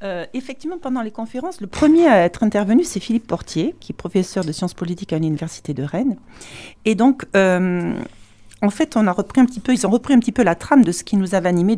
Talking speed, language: 245 wpm, French